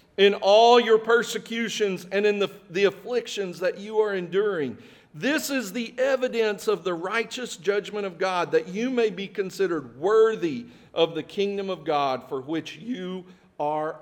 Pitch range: 135-195 Hz